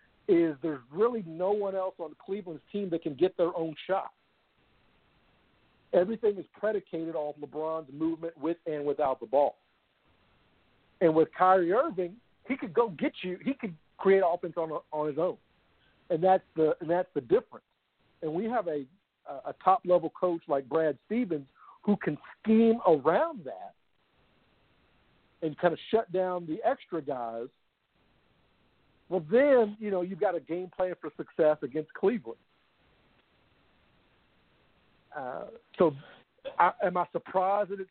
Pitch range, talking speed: 150-195 Hz, 150 wpm